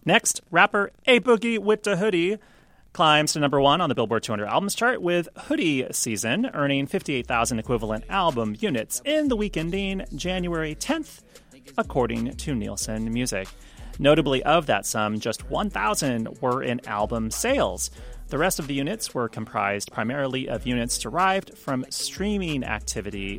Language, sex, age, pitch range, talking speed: English, male, 30-49, 105-160 Hz, 150 wpm